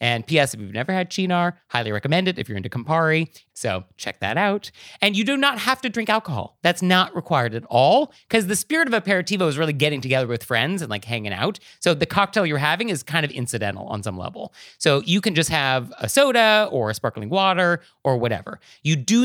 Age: 30-49